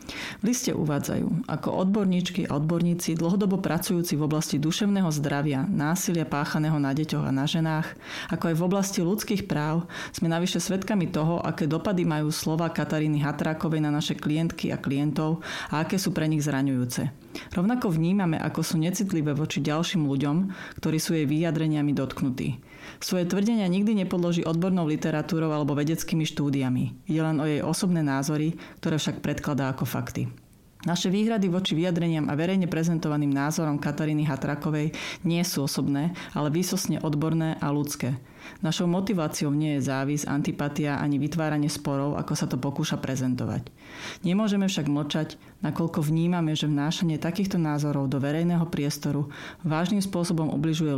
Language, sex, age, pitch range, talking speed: Slovak, female, 30-49, 145-170 Hz, 150 wpm